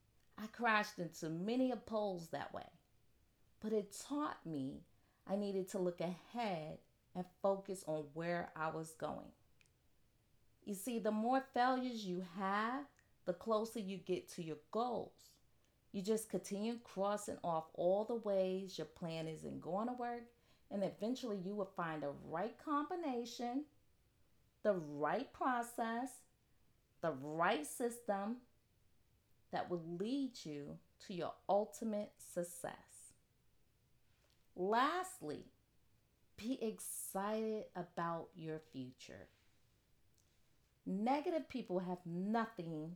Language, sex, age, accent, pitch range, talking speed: English, female, 40-59, American, 155-220 Hz, 115 wpm